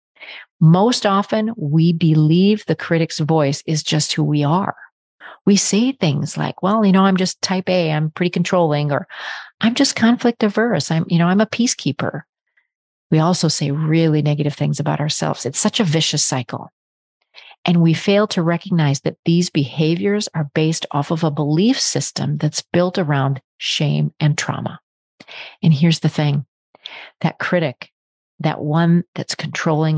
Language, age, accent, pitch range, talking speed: English, 40-59, American, 150-185 Hz, 160 wpm